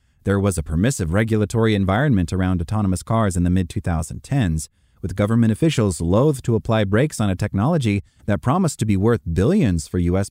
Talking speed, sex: 175 wpm, male